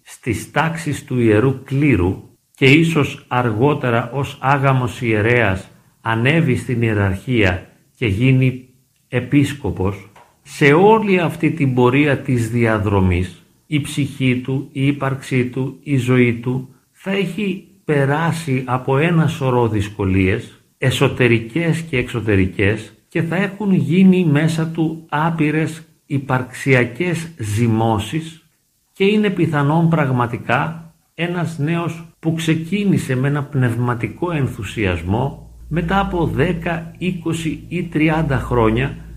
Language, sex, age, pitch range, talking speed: Greek, male, 50-69, 120-160 Hz, 110 wpm